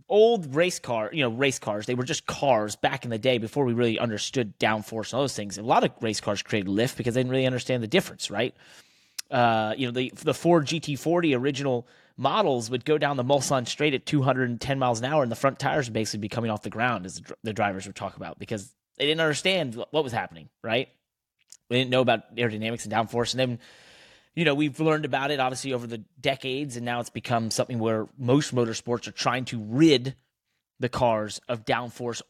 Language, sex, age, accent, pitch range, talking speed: English, male, 30-49, American, 115-140 Hz, 225 wpm